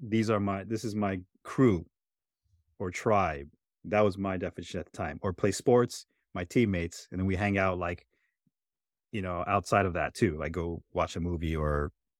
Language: English